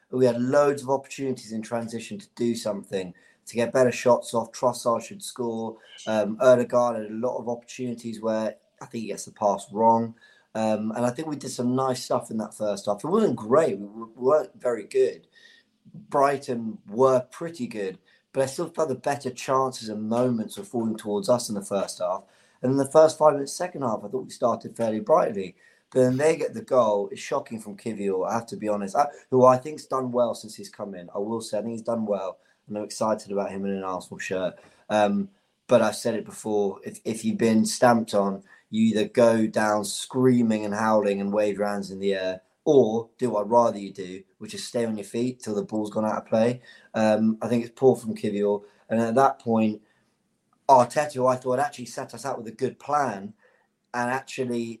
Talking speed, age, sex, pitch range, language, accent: 215 wpm, 30-49, male, 105-130 Hz, English, British